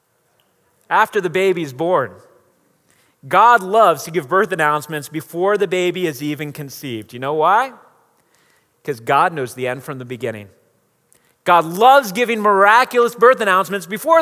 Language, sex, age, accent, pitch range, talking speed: English, male, 30-49, American, 175-240 Hz, 145 wpm